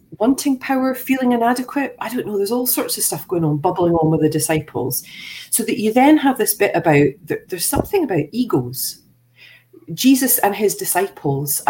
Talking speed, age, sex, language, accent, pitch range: 180 wpm, 40-59, female, English, British, 160-260 Hz